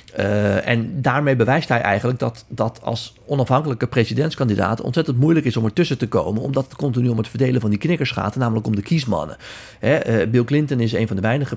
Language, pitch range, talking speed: Dutch, 95-120 Hz, 215 wpm